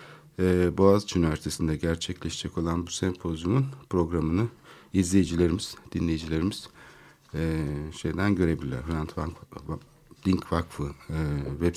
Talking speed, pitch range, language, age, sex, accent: 85 wpm, 80-110 Hz, Turkish, 60-79, male, native